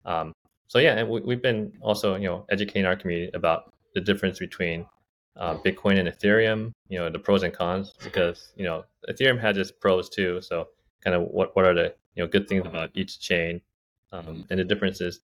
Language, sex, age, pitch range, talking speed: English, male, 20-39, 85-105 Hz, 210 wpm